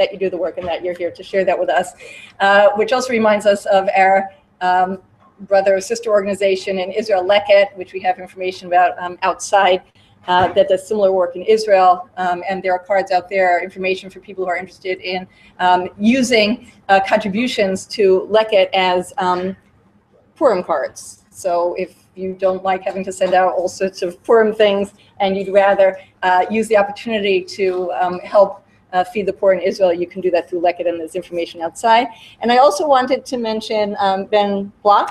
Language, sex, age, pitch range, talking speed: English, female, 40-59, 180-215 Hz, 200 wpm